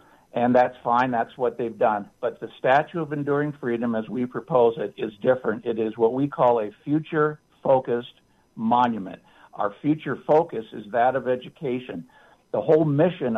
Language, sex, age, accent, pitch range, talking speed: English, male, 60-79, American, 120-150 Hz, 165 wpm